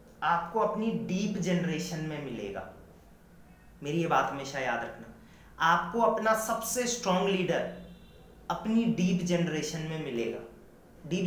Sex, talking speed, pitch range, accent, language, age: male, 120 wpm, 155-195 Hz, native, Hindi, 30-49